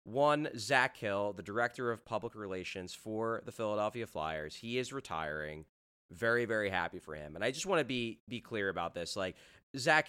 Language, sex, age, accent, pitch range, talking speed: English, male, 30-49, American, 95-115 Hz, 190 wpm